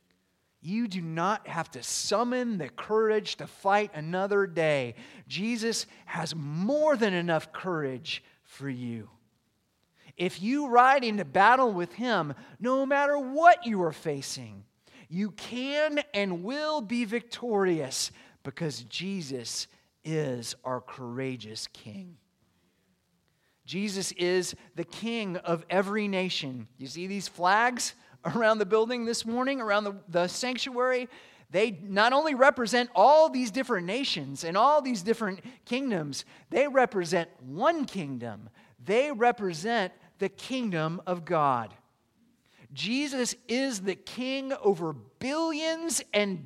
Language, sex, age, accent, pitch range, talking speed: English, male, 30-49, American, 145-240 Hz, 125 wpm